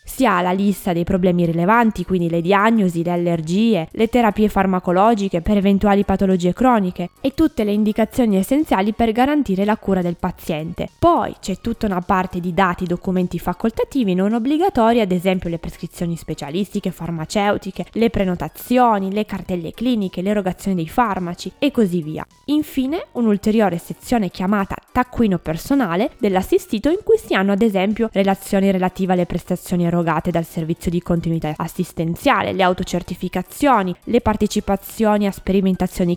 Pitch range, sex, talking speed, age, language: 180-240 Hz, female, 145 wpm, 20-39, Italian